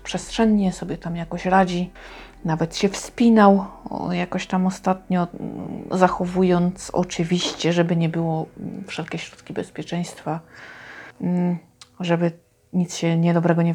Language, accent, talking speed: Polish, native, 105 wpm